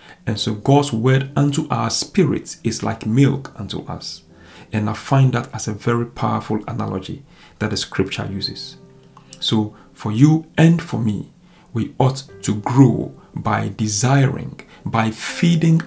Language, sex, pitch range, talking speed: English, male, 110-155 Hz, 150 wpm